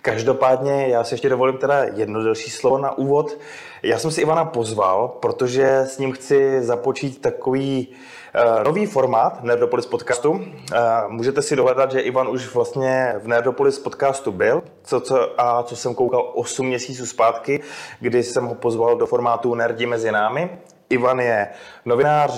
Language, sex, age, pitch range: Czech, male, 20-39, 125-150 Hz